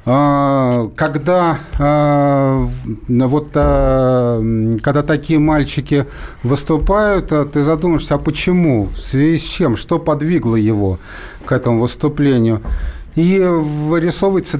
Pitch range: 130-160 Hz